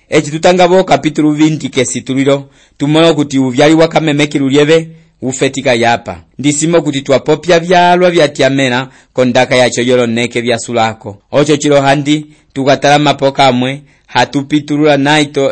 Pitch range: 125-150 Hz